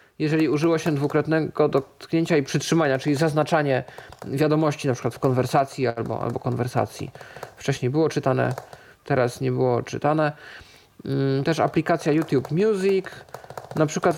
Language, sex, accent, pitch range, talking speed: Polish, male, native, 140-175 Hz, 125 wpm